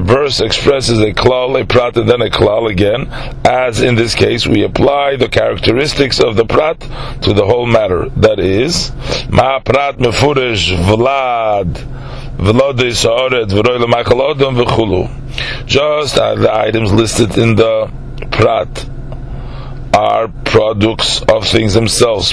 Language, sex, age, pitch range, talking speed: English, male, 40-59, 115-130 Hz, 120 wpm